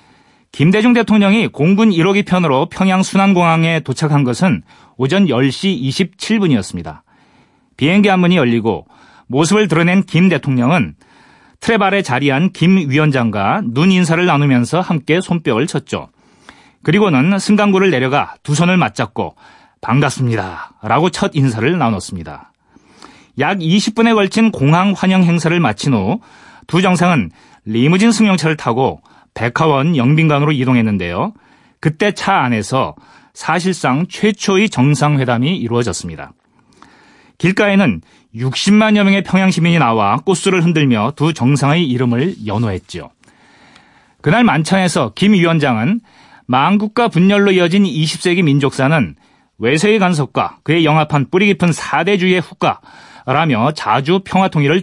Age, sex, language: 40-59, male, Korean